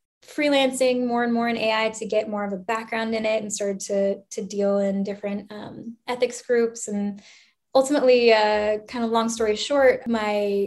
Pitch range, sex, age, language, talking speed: 205-235 Hz, female, 10-29, English, 185 wpm